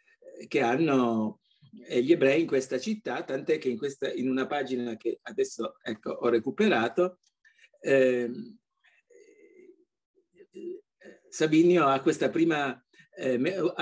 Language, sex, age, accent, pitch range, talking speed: Italian, male, 50-69, native, 125-205 Hz, 95 wpm